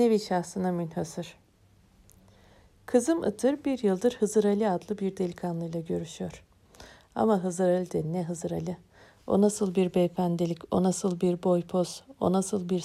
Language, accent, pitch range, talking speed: Turkish, native, 175-220 Hz, 150 wpm